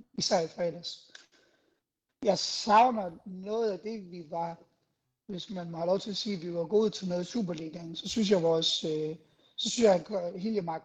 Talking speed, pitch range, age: 195 wpm, 170-210 Hz, 60-79